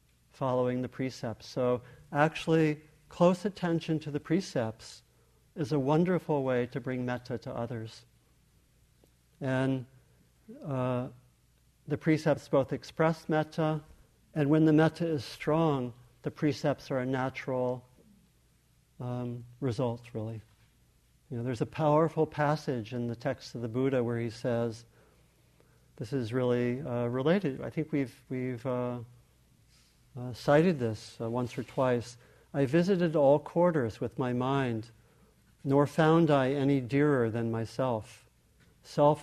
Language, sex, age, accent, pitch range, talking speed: English, male, 50-69, American, 120-150 Hz, 135 wpm